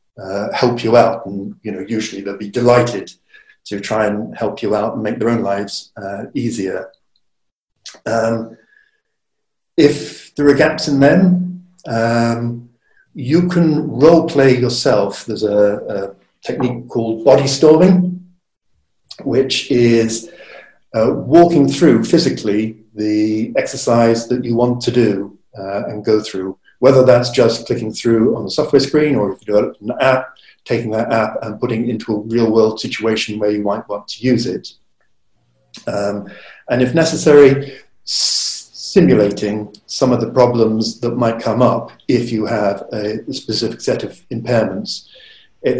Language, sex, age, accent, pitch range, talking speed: English, male, 50-69, British, 105-140 Hz, 155 wpm